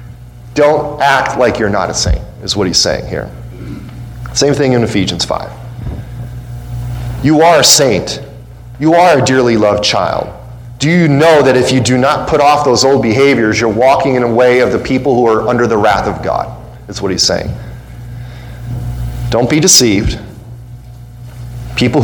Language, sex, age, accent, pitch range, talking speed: English, male, 40-59, American, 115-135 Hz, 170 wpm